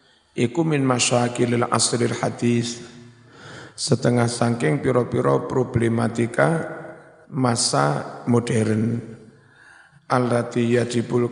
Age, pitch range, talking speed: 50-69, 120-140 Hz, 75 wpm